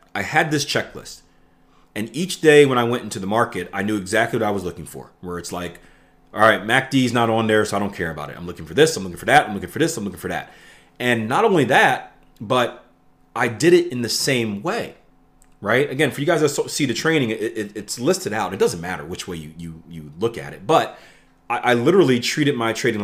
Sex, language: male, English